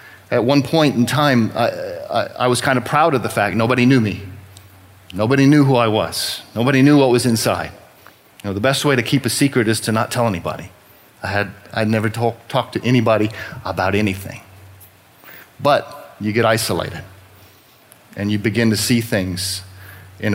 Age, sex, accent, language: 40-59, male, American, English